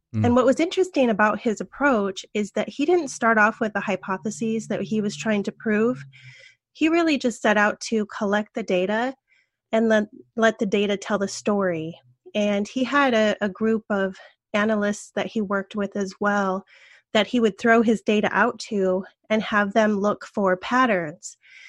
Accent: American